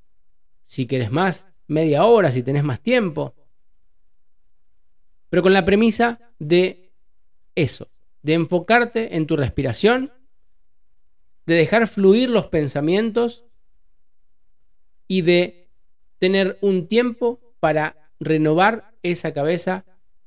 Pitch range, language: 130-185 Hz, Spanish